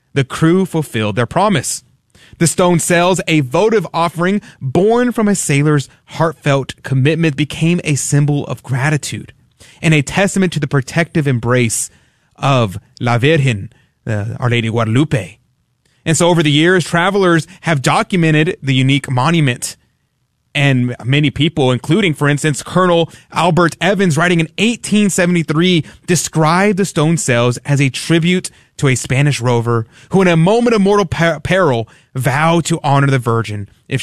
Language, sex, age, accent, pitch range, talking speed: English, male, 30-49, American, 130-170 Hz, 145 wpm